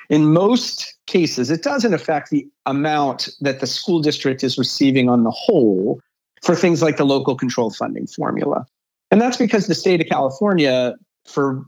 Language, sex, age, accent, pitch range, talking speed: English, male, 40-59, American, 125-170 Hz, 170 wpm